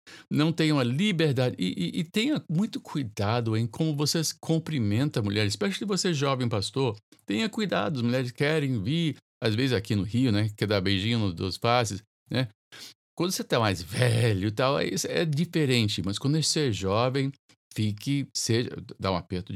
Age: 50-69